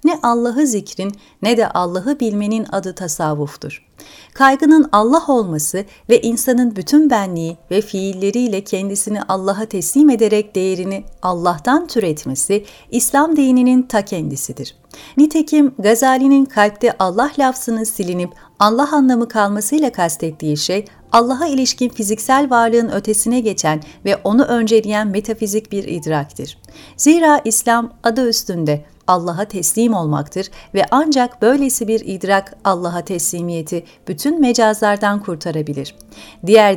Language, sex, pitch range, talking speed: Turkish, female, 180-245 Hz, 115 wpm